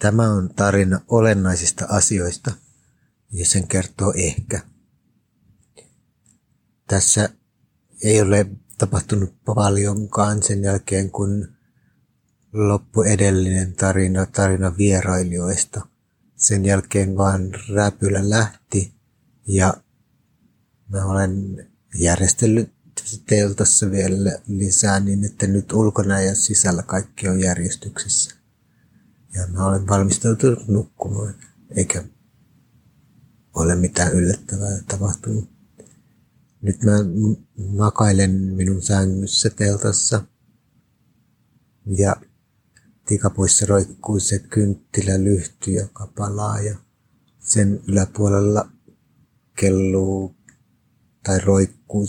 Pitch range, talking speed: 95-110 Hz, 85 wpm